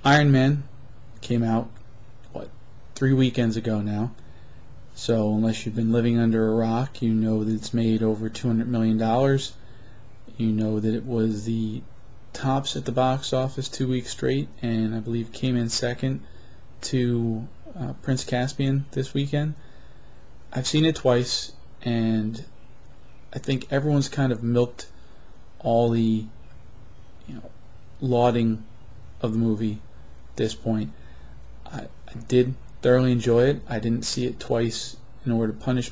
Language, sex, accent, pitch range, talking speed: English, male, American, 110-125 Hz, 145 wpm